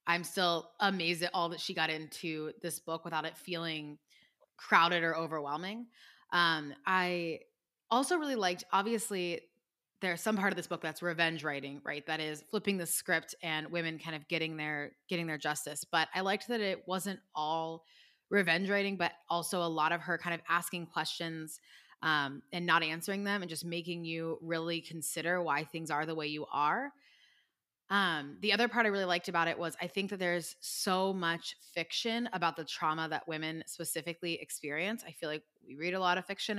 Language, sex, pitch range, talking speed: English, female, 160-190 Hz, 190 wpm